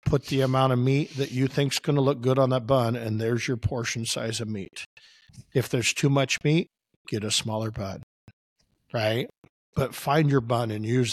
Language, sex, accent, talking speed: English, male, American, 205 wpm